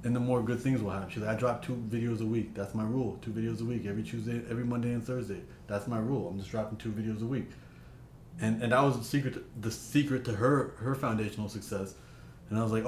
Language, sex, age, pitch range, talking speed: English, male, 20-39, 100-120 Hz, 255 wpm